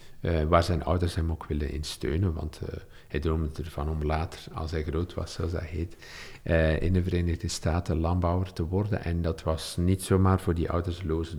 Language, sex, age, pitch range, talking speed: Dutch, male, 50-69, 80-95 Hz, 205 wpm